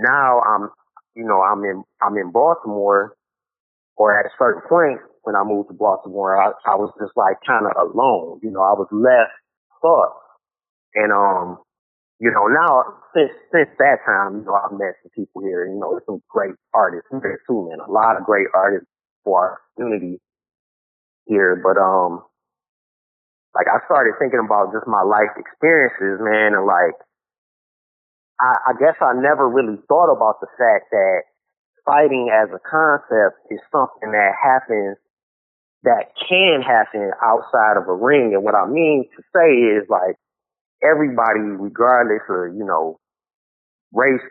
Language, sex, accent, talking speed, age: English, male, American, 165 wpm, 30-49